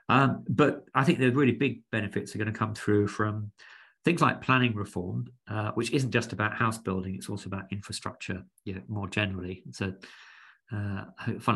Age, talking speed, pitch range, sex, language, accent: 40-59, 180 wpm, 95-115 Hz, male, English, British